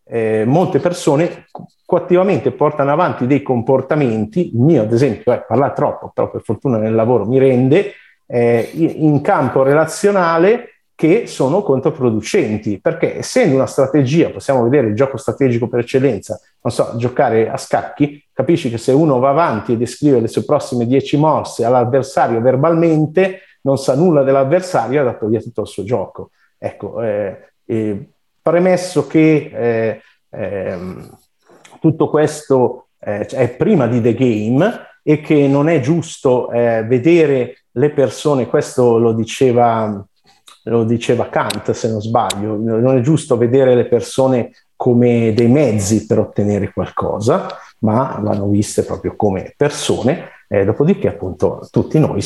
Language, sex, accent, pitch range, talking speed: Italian, male, native, 115-150 Hz, 145 wpm